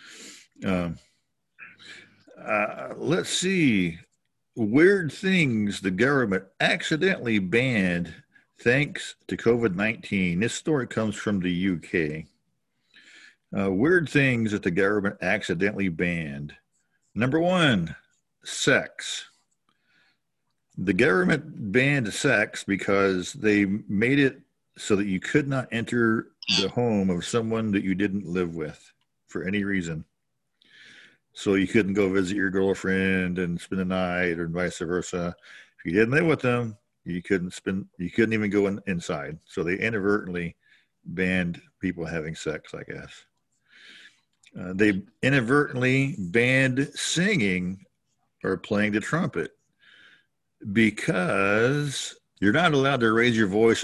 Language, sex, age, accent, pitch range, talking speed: English, male, 50-69, American, 95-120 Hz, 125 wpm